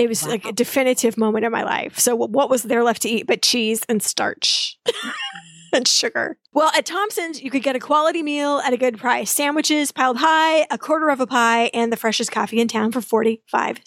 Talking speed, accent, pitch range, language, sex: 220 wpm, American, 230-290 Hz, English, female